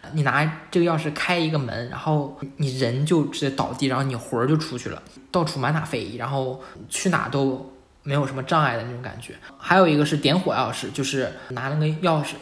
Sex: male